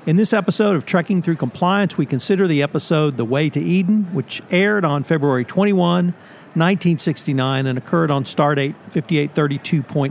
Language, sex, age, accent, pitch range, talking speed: English, male, 50-69, American, 140-175 Hz, 140 wpm